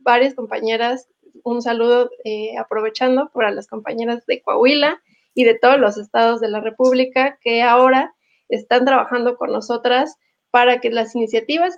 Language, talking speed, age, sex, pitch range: English, 150 wpm, 20-39, female, 230-275 Hz